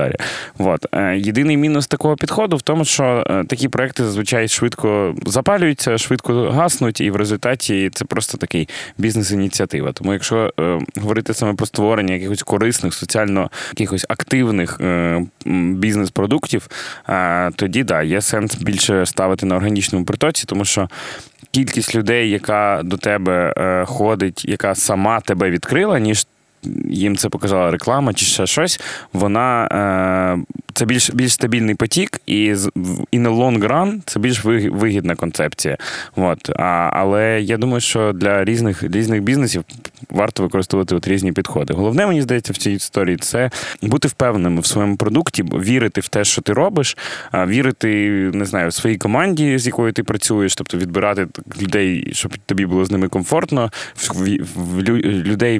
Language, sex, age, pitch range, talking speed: Ukrainian, male, 20-39, 95-120 Hz, 135 wpm